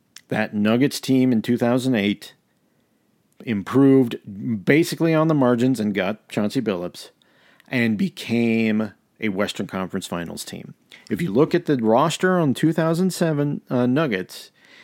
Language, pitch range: English, 105-130 Hz